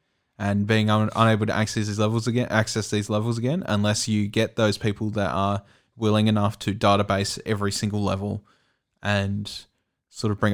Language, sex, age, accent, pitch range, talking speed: English, male, 20-39, Australian, 100-110 Hz, 175 wpm